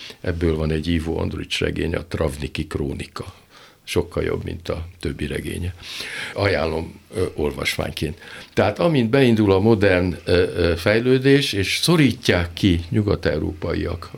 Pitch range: 80-110 Hz